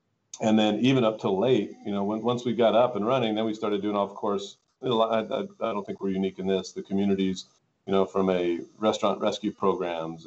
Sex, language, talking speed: male, English, 230 wpm